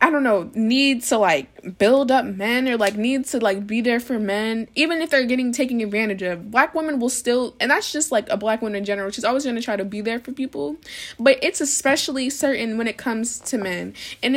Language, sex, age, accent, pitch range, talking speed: English, female, 10-29, American, 205-260 Hz, 240 wpm